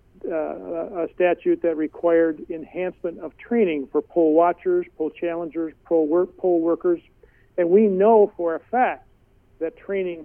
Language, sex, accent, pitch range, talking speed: English, male, American, 150-180 Hz, 145 wpm